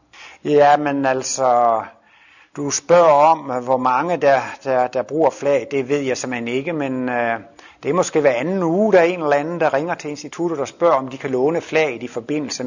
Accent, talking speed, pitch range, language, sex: native, 210 wpm, 135-175 Hz, Danish, male